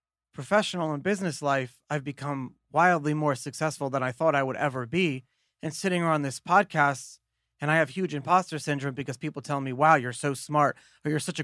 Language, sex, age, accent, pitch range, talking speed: English, male, 30-49, American, 140-185 Hz, 205 wpm